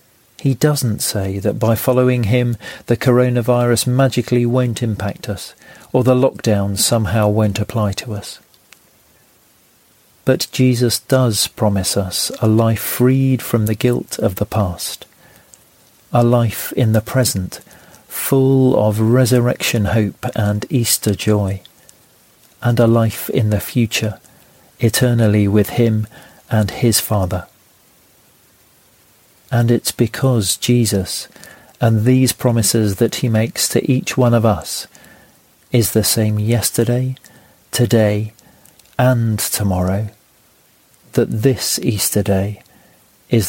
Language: English